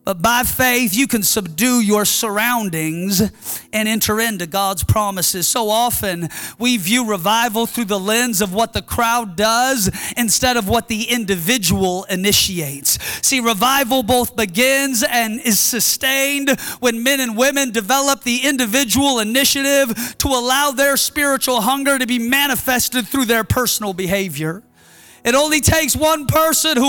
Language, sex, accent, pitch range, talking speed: English, male, American, 230-320 Hz, 145 wpm